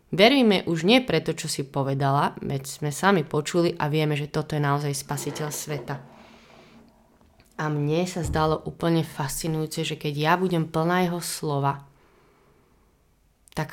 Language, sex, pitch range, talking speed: Slovak, female, 150-170 Hz, 145 wpm